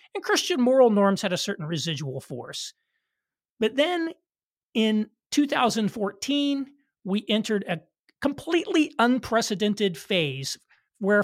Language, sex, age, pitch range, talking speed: English, male, 40-59, 175-240 Hz, 105 wpm